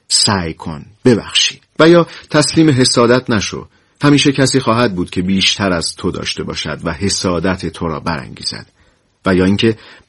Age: 40-59